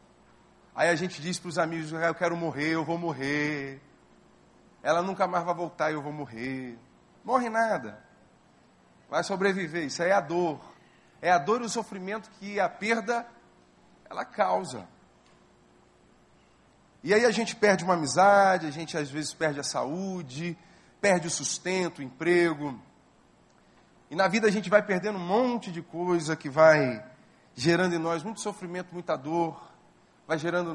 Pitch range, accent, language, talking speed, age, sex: 145-185 Hz, Brazilian, Portuguese, 165 wpm, 40-59, male